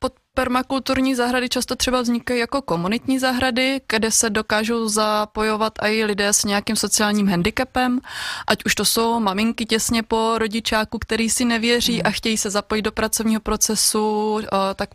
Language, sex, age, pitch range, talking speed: Czech, female, 20-39, 195-220 Hz, 155 wpm